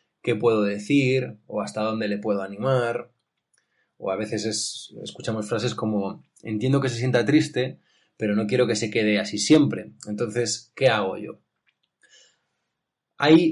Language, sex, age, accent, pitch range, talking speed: Spanish, male, 20-39, Spanish, 110-135 Hz, 145 wpm